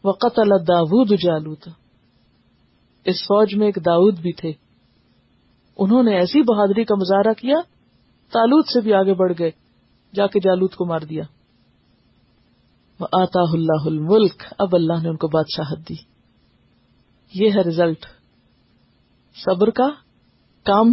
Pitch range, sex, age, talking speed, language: 175-225 Hz, female, 50-69, 125 wpm, Urdu